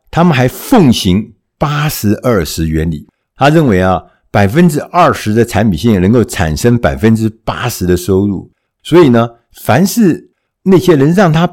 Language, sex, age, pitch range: Chinese, male, 60-79, 100-150 Hz